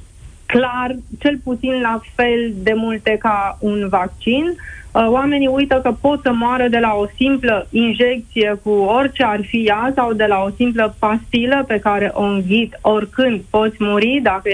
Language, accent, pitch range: Romanian, native, 210-255 Hz